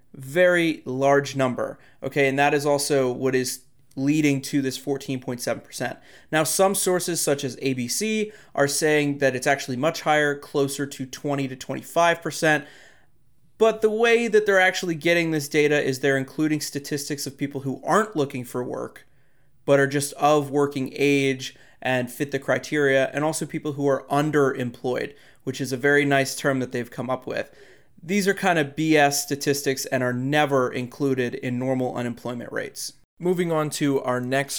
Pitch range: 130-155 Hz